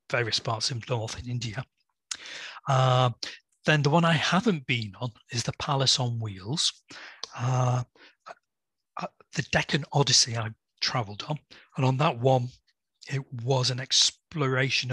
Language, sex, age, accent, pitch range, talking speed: English, male, 40-59, British, 120-135 Hz, 135 wpm